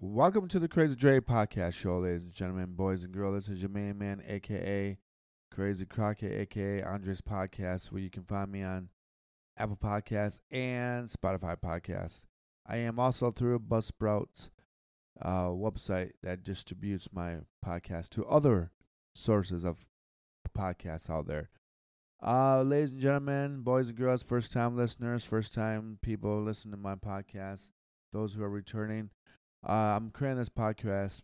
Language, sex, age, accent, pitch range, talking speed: English, male, 20-39, American, 95-120 Hz, 150 wpm